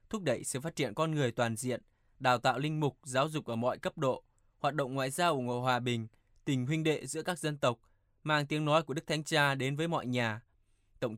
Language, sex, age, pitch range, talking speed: Vietnamese, male, 20-39, 125-155 Hz, 245 wpm